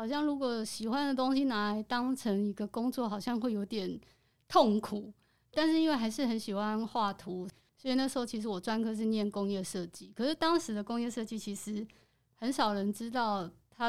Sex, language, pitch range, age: female, Chinese, 200-245 Hz, 20-39